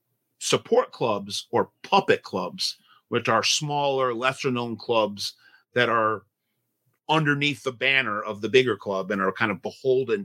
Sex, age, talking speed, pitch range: male, 40-59, 145 wpm, 105-135 Hz